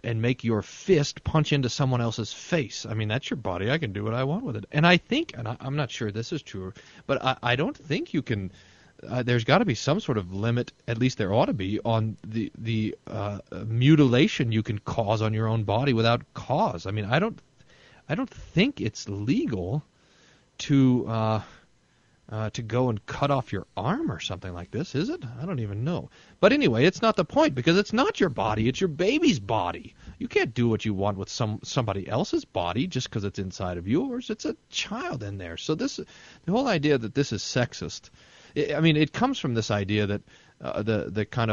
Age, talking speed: 40-59, 225 wpm